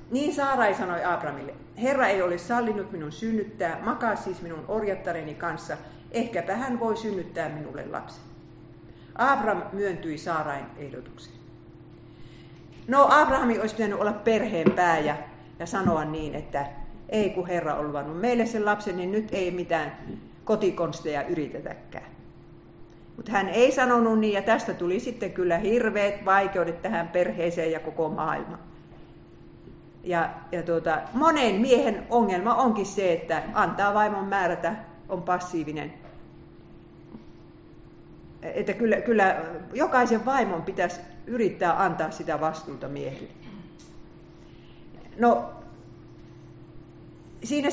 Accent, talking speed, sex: native, 120 wpm, female